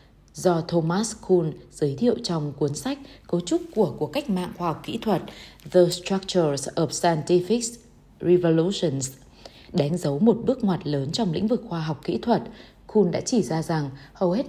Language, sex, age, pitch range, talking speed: Vietnamese, female, 20-39, 155-210 Hz, 180 wpm